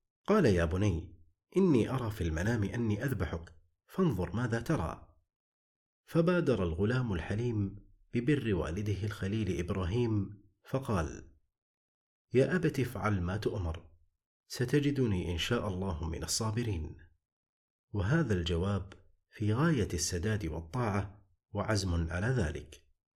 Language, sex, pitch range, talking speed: Arabic, male, 85-115 Hz, 105 wpm